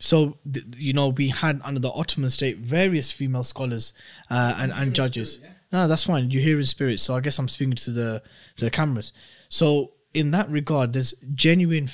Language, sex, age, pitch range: English, male, 20-39, 120-140 Hz